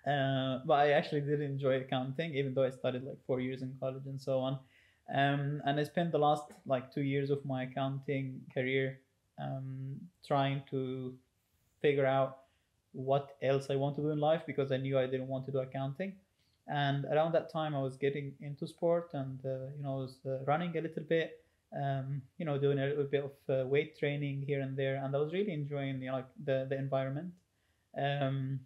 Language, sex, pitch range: English, male, 135-150 Hz